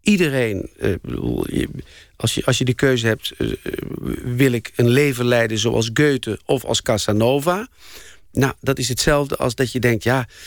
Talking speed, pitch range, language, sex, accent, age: 155 wpm, 115-160 Hz, Dutch, male, Dutch, 50-69